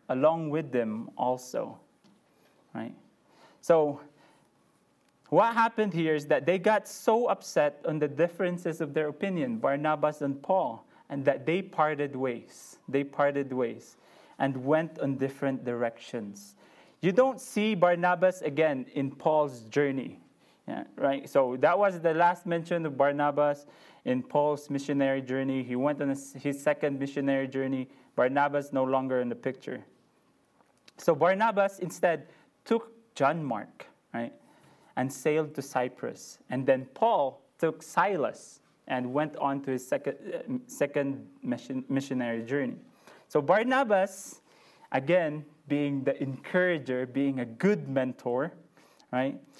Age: 20-39